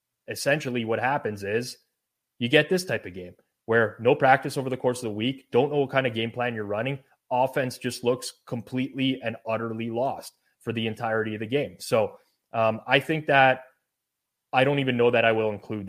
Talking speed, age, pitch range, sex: 205 wpm, 20-39, 110-130 Hz, male